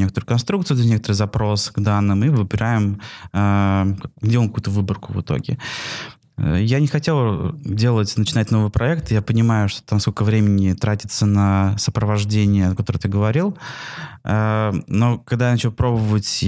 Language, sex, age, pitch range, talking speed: Russian, male, 20-39, 100-120 Hz, 140 wpm